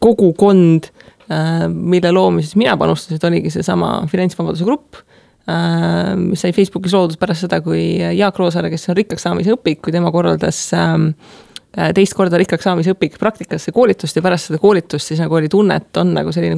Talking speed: 170 wpm